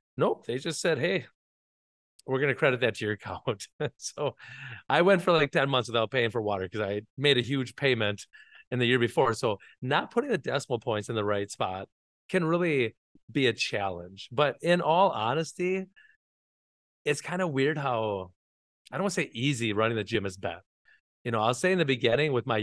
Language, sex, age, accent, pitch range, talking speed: English, male, 30-49, American, 110-145 Hz, 205 wpm